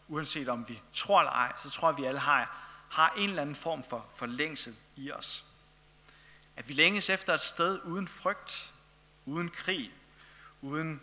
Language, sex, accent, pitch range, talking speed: Danish, male, native, 125-155 Hz, 175 wpm